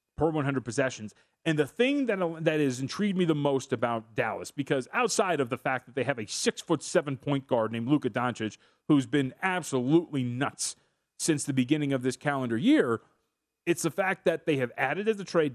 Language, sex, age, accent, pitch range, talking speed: English, male, 30-49, American, 130-170 Hz, 195 wpm